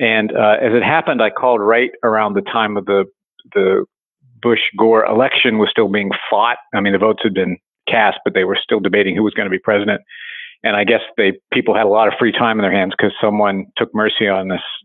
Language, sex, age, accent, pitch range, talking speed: English, male, 50-69, American, 100-115 Hz, 240 wpm